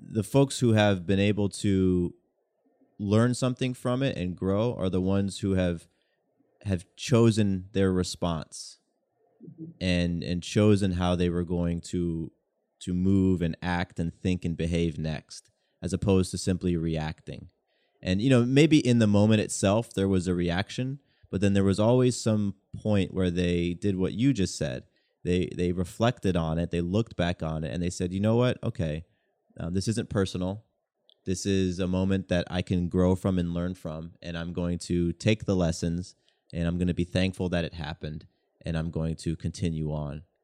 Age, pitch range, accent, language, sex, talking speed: 30-49, 85-105 Hz, American, English, male, 185 wpm